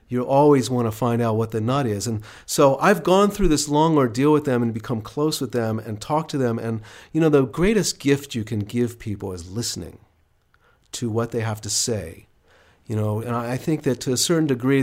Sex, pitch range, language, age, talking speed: male, 105-125 Hz, English, 40-59, 230 wpm